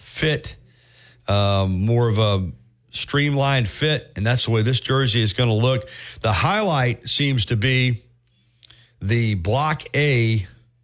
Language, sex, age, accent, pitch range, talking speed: English, male, 40-59, American, 105-125 Hz, 140 wpm